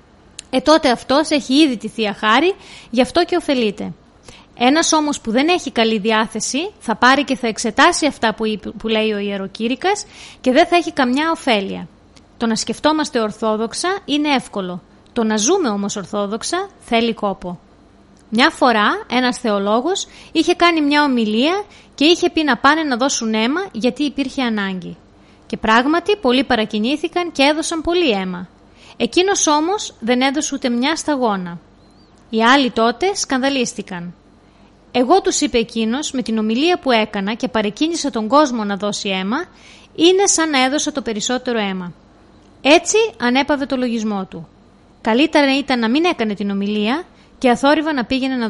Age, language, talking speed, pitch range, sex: 20-39, Greek, 155 wpm, 215-295 Hz, female